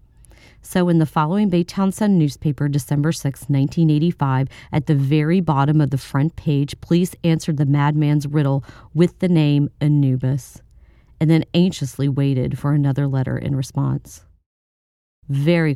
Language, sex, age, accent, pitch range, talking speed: English, female, 40-59, American, 135-165 Hz, 140 wpm